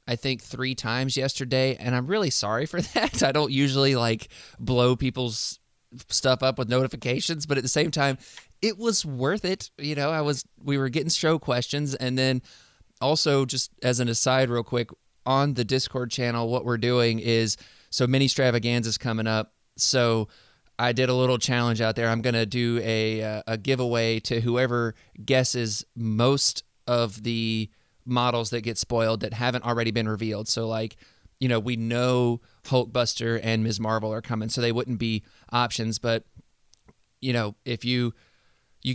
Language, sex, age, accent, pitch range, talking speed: English, male, 20-39, American, 115-135 Hz, 175 wpm